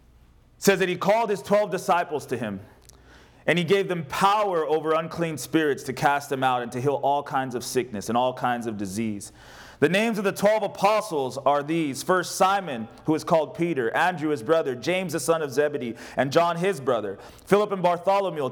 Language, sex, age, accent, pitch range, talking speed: English, male, 30-49, American, 140-205 Hz, 200 wpm